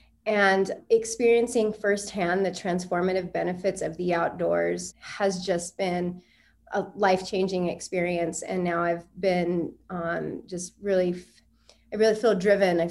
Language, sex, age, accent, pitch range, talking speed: English, female, 30-49, American, 175-200 Hz, 125 wpm